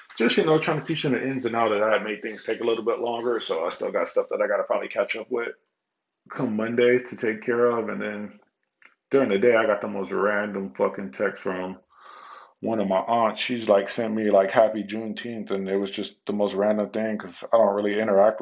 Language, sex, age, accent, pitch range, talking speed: English, male, 20-39, American, 105-125 Hz, 250 wpm